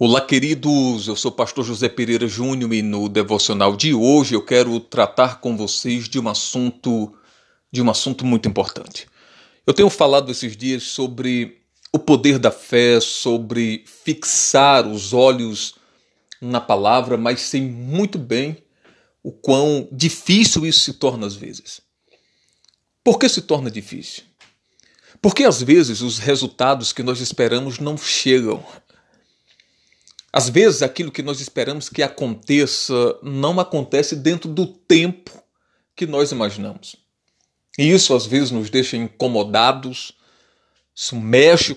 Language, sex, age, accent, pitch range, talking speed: Portuguese, male, 40-59, Brazilian, 120-150 Hz, 135 wpm